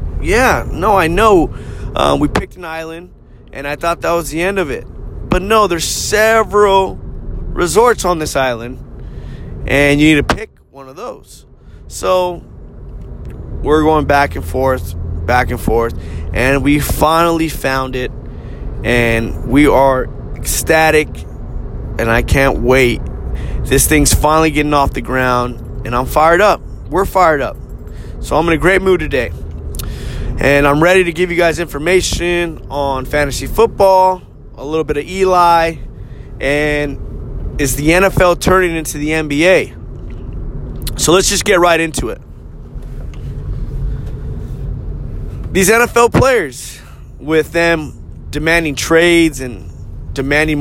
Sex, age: male, 20-39